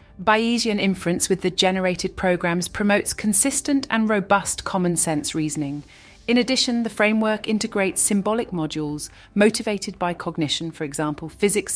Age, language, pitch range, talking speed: 30-49, English, 150-195 Hz, 135 wpm